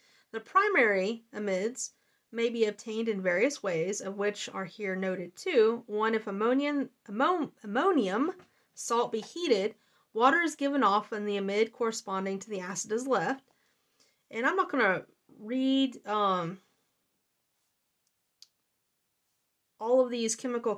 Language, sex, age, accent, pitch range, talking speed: English, female, 30-49, American, 200-255 Hz, 135 wpm